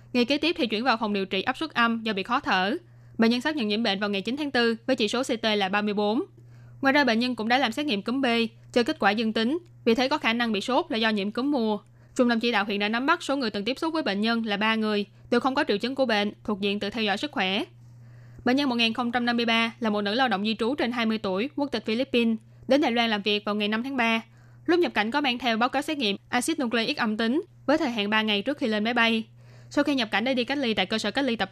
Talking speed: 300 wpm